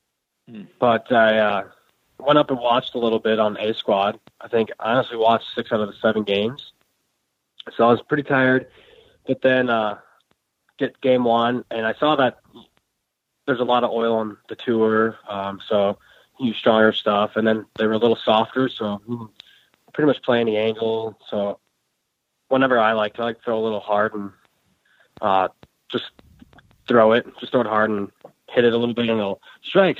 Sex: male